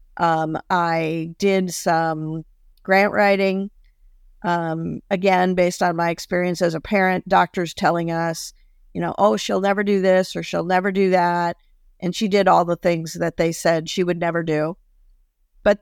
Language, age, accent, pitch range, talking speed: English, 50-69, American, 165-190 Hz, 165 wpm